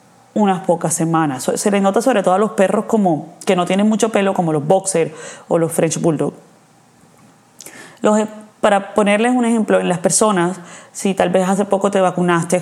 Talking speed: 185 wpm